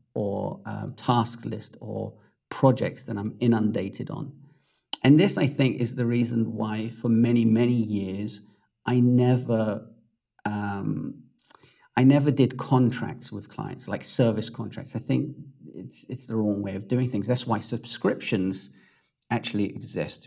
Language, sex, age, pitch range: English, male, 40-59, 110-140 Hz